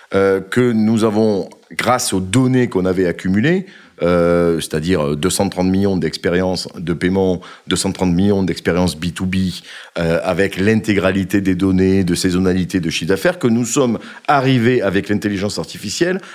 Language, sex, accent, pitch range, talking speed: French, male, French, 90-125 Hz, 135 wpm